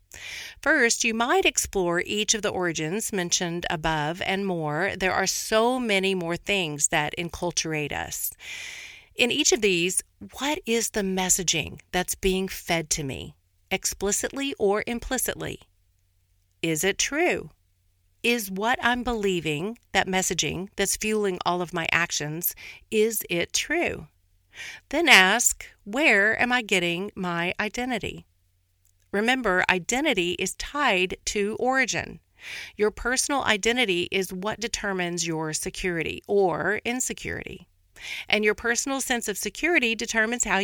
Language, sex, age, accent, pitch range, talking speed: English, female, 50-69, American, 170-225 Hz, 130 wpm